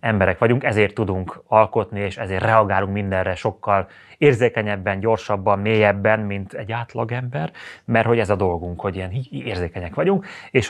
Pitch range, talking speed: 100-125 Hz, 145 wpm